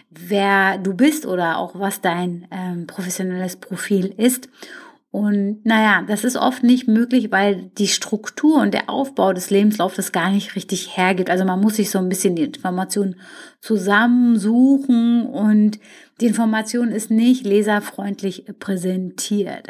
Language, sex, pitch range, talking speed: German, female, 190-235 Hz, 145 wpm